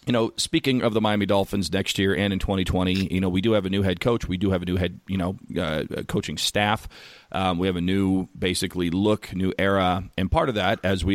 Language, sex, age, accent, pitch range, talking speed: English, male, 40-59, American, 90-100 Hz, 255 wpm